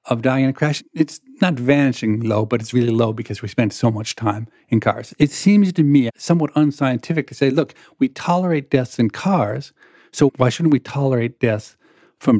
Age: 50-69